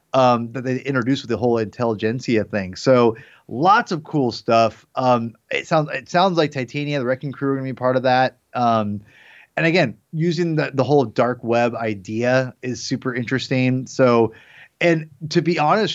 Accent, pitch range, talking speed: American, 115-145 Hz, 185 wpm